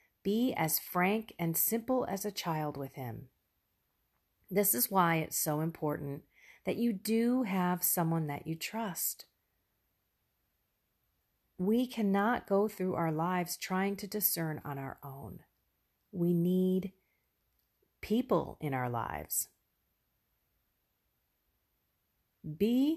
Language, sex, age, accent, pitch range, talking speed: English, female, 40-59, American, 155-230 Hz, 110 wpm